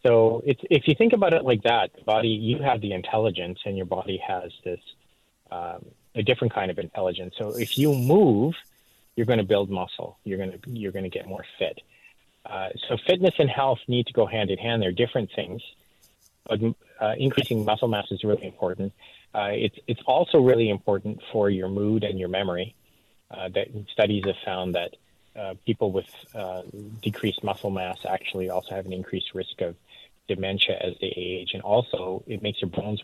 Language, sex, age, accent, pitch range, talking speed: English, male, 30-49, American, 95-115 Hz, 195 wpm